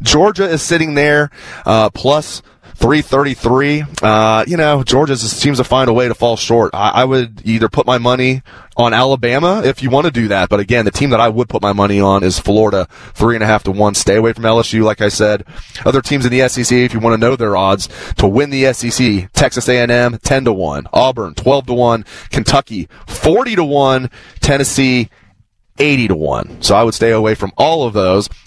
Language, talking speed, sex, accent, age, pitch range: English, 215 wpm, male, American, 30-49, 110-140 Hz